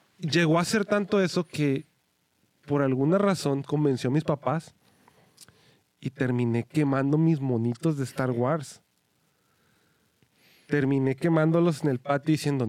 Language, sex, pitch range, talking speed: English, male, 120-155 Hz, 130 wpm